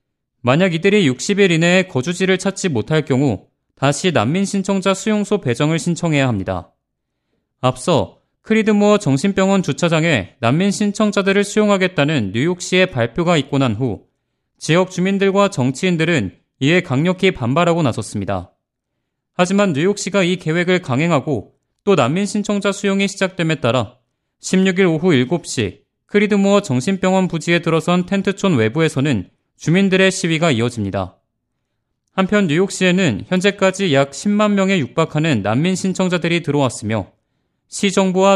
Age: 30-49